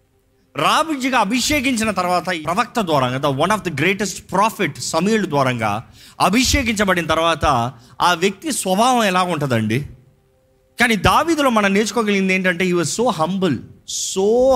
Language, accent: Telugu, native